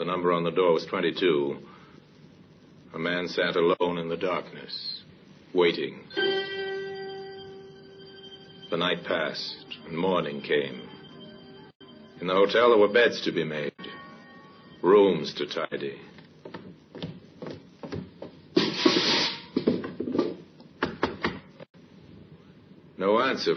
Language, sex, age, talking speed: English, male, 60-79, 90 wpm